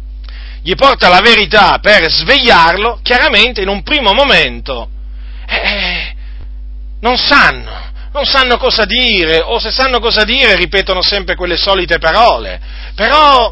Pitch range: 155-255 Hz